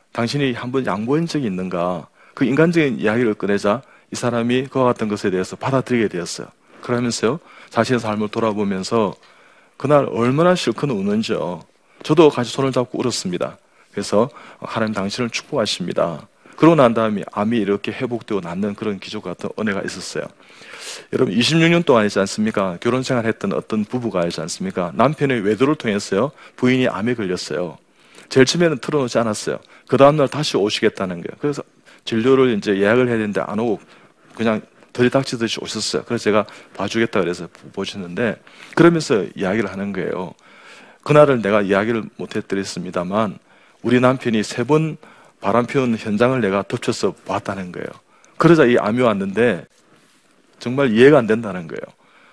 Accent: native